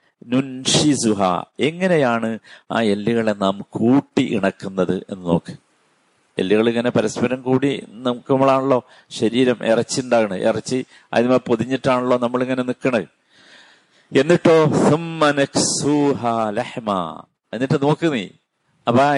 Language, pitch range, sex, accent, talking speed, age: Malayalam, 105-140 Hz, male, native, 85 wpm, 50-69